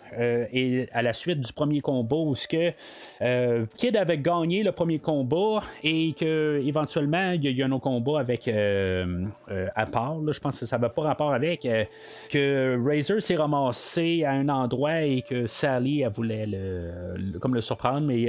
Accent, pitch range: Canadian, 120-160 Hz